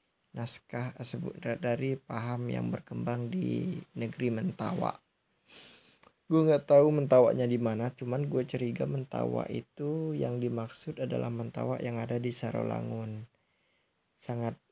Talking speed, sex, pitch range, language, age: 120 wpm, male, 110-125 Hz, Indonesian, 20-39